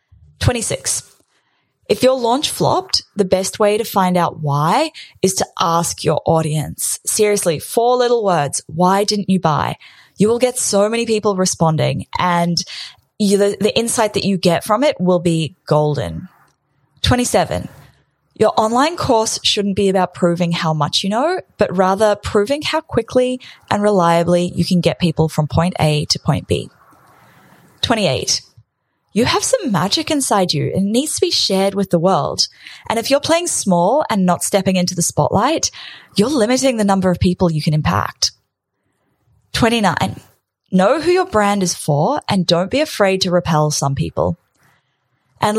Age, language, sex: 10-29, English, female